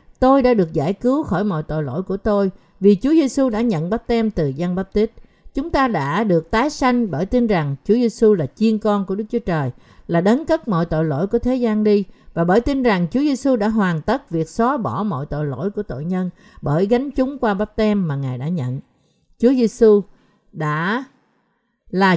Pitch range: 165-235 Hz